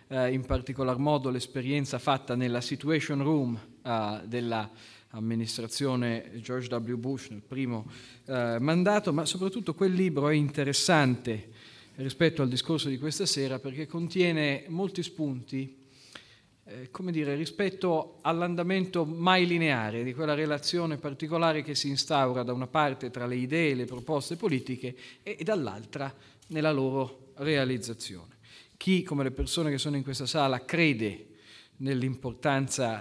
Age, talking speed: 40-59, 135 wpm